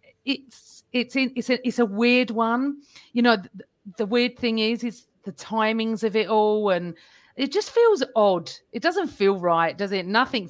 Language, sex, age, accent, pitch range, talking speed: English, female, 40-59, British, 200-245 Hz, 195 wpm